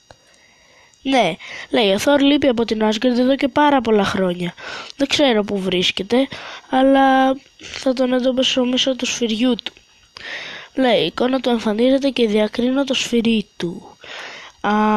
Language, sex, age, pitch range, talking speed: Greek, female, 20-39, 195-255 Hz, 140 wpm